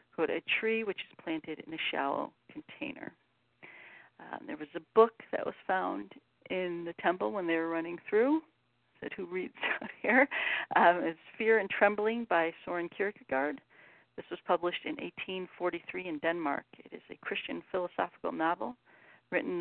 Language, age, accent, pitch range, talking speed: English, 50-69, American, 160-195 Hz, 160 wpm